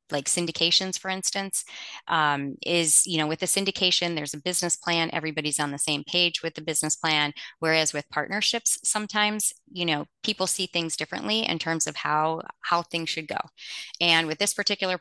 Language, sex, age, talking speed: English, female, 20-39, 185 wpm